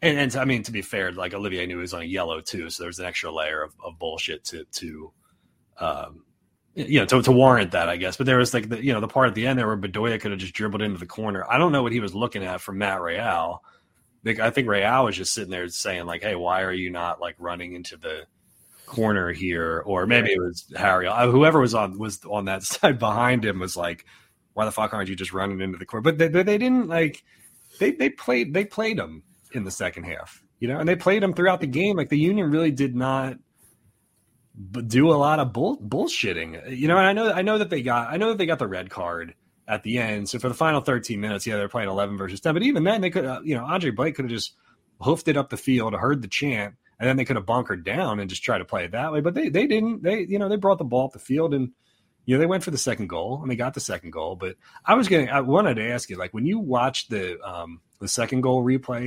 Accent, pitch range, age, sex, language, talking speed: American, 100-145 Hz, 30-49, male, English, 275 wpm